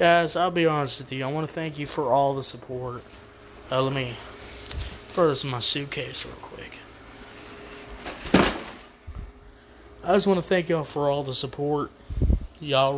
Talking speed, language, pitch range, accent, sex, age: 165 wpm, English, 120-155 Hz, American, male, 20-39